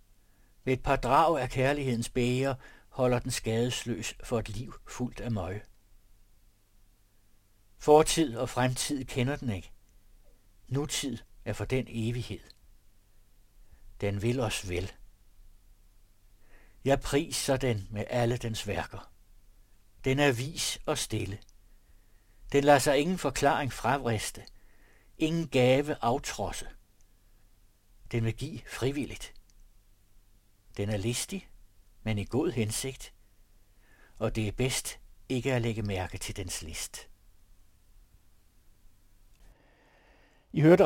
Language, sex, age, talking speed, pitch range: Danish, male, 60-79, 110 wpm, 100-125 Hz